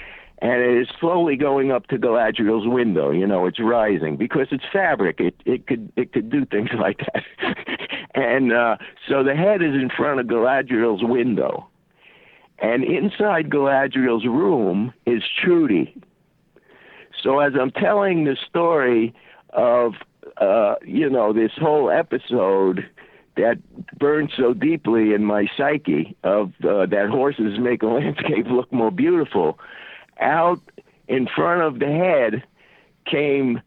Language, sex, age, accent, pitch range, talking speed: English, male, 60-79, American, 125-185 Hz, 140 wpm